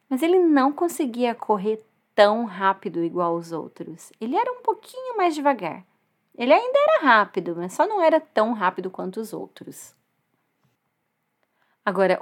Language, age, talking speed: Portuguese, 30-49, 145 wpm